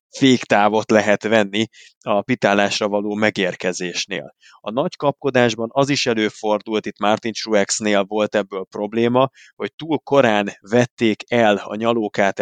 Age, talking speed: 20-39, 125 wpm